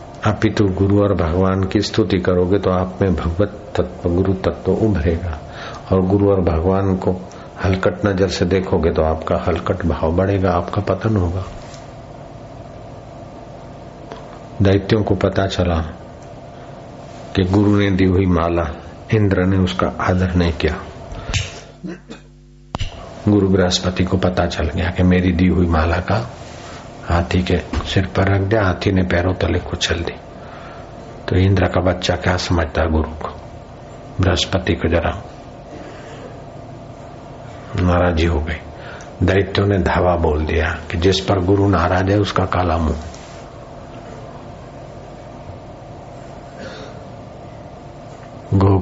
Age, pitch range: 60-79, 90-105 Hz